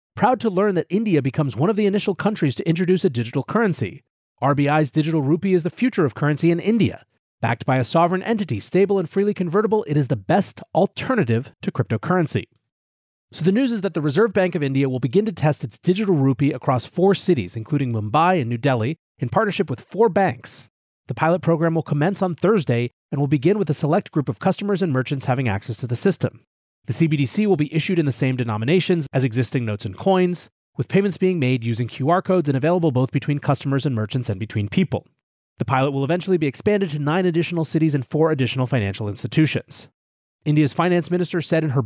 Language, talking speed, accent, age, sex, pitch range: English, 210 wpm, American, 30-49, male, 130-180 Hz